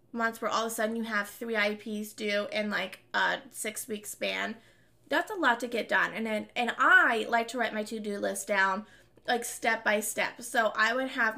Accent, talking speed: American, 220 wpm